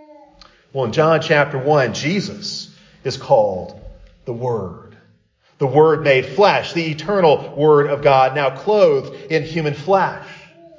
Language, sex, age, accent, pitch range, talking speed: English, male, 40-59, American, 140-190 Hz, 135 wpm